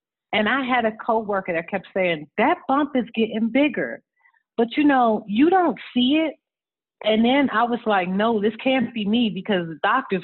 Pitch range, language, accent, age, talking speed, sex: 175-225 Hz, English, American, 40-59, 195 wpm, female